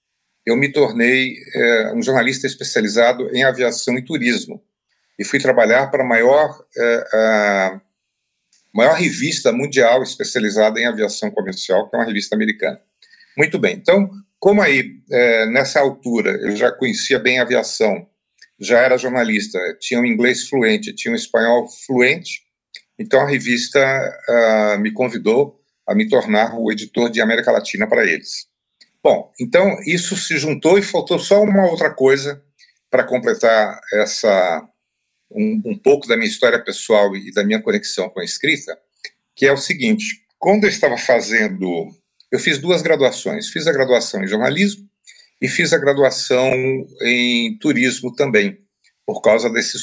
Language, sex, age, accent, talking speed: Portuguese, male, 40-59, Brazilian, 155 wpm